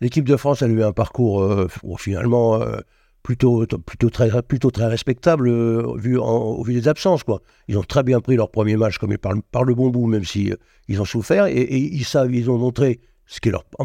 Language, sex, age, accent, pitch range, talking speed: French, male, 60-79, French, 110-125 Hz, 210 wpm